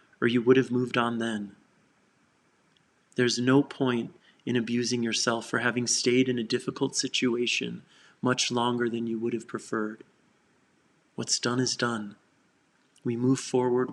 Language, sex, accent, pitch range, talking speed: English, male, American, 110-125 Hz, 145 wpm